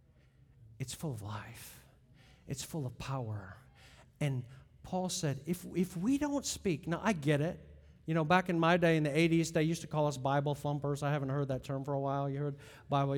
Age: 50-69